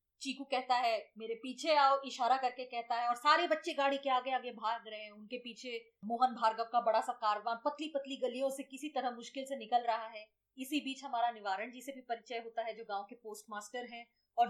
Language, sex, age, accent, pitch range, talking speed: Hindi, female, 30-49, native, 235-295 Hz, 210 wpm